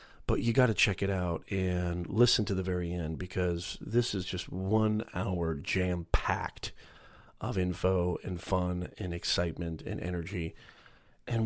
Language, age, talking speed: English, 40-59, 150 wpm